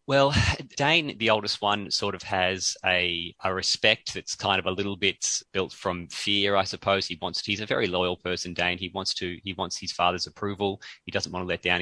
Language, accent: English, Australian